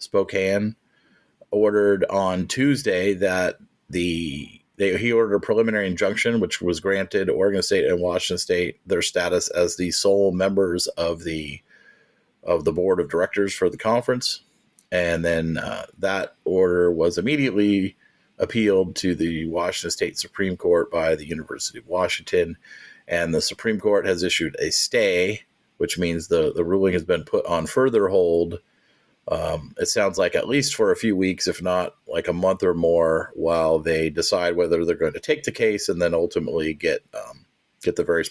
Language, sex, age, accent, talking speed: English, male, 40-59, American, 170 wpm